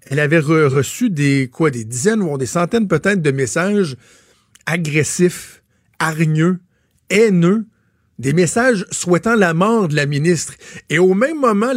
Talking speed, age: 150 wpm, 60-79